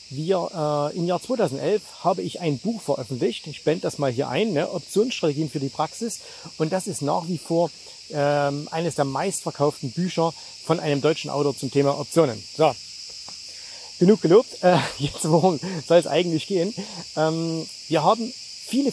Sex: male